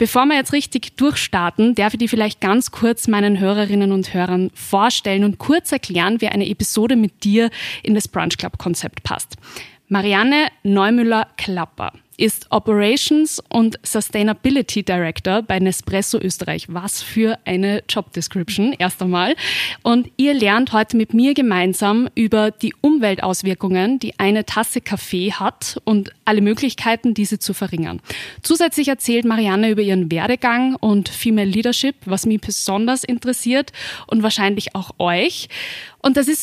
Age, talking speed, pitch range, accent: 20-39, 140 wpm, 195-235 Hz, German